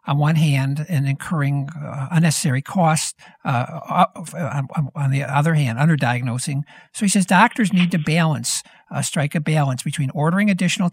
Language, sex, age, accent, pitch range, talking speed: English, male, 60-79, American, 140-175 Hz, 165 wpm